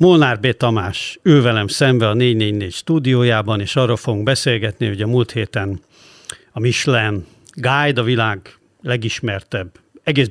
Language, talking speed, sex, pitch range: Hungarian, 140 wpm, male, 110-135 Hz